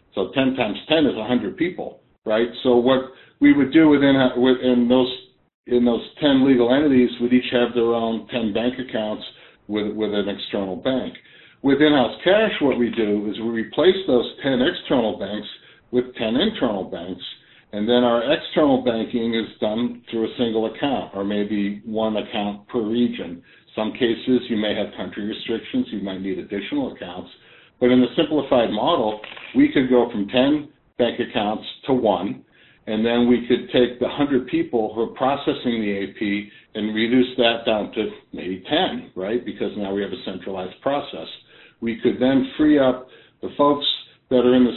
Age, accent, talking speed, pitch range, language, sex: 60-79, American, 180 wpm, 110-130 Hz, English, male